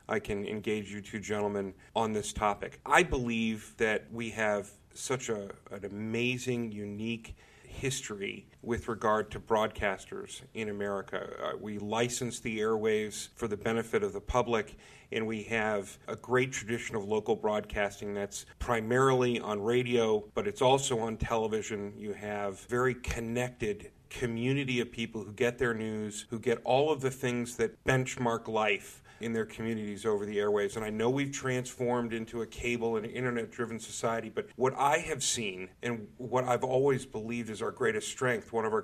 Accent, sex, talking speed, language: American, male, 170 wpm, English